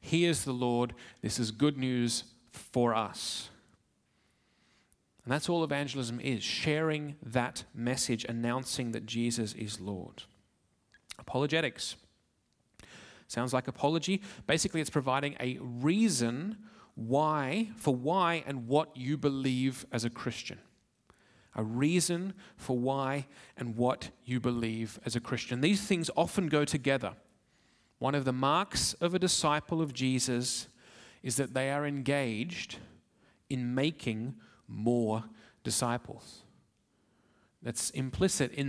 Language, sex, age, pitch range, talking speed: English, male, 30-49, 120-150 Hz, 125 wpm